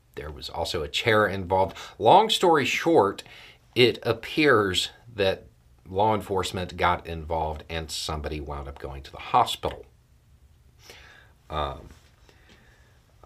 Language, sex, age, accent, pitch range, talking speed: English, male, 40-59, American, 80-110 Hz, 115 wpm